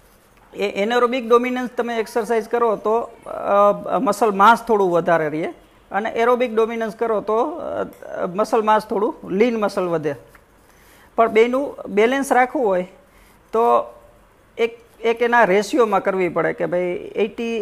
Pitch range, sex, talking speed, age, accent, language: 190-235 Hz, female, 140 wpm, 40-59, native, Gujarati